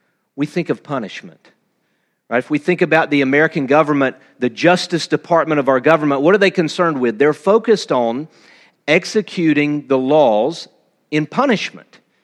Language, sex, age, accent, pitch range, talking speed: English, male, 50-69, American, 140-195 Hz, 150 wpm